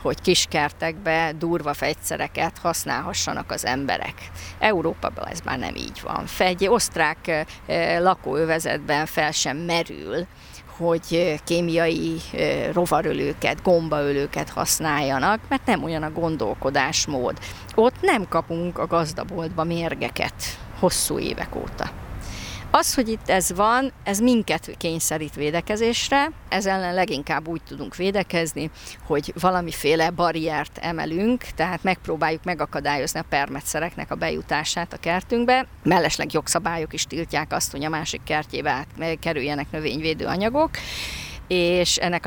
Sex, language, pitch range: female, Hungarian, 150-180 Hz